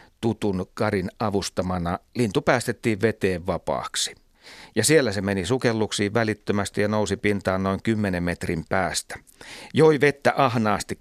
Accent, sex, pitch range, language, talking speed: native, male, 95-115 Hz, Finnish, 125 wpm